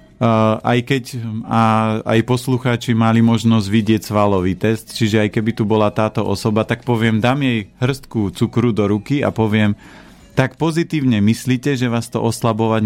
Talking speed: 165 wpm